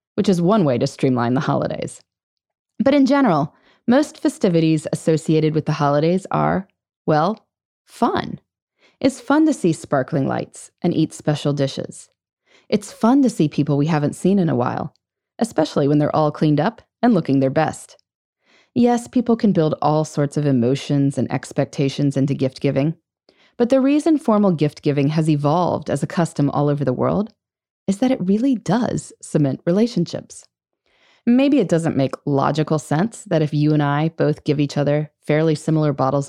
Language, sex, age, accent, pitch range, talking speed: English, female, 20-39, American, 145-215 Hz, 170 wpm